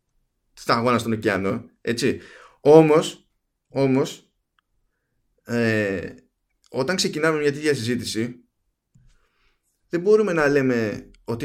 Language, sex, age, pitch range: Greek, male, 20-39, 110-140 Hz